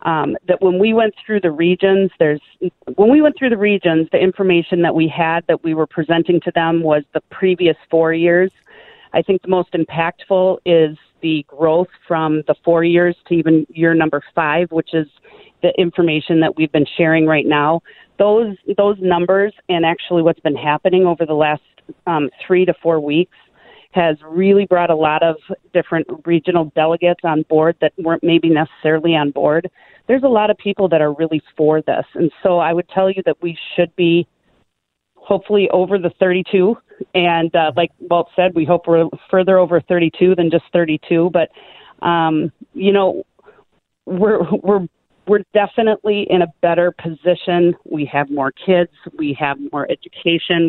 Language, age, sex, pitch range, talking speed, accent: English, 40-59, female, 160-185 Hz, 175 wpm, American